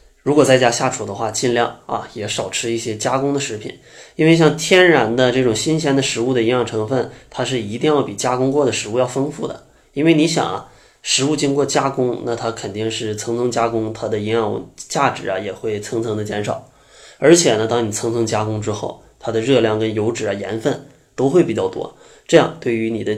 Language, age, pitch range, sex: Chinese, 20-39, 110-140 Hz, male